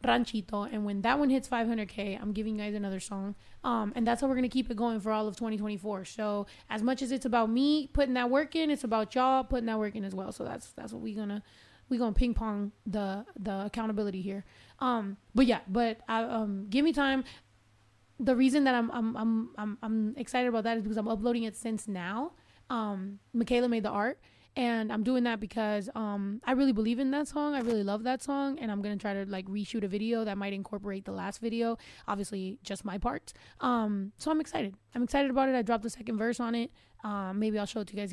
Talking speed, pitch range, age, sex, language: 240 wpm, 205-245 Hz, 20-39, female, English